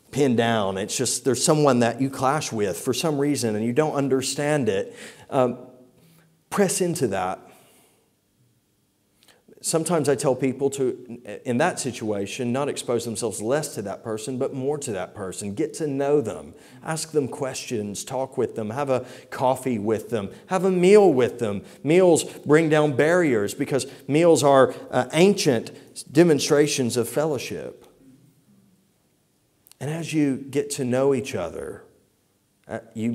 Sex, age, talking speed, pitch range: male, 40-59, 150 wpm, 125-160 Hz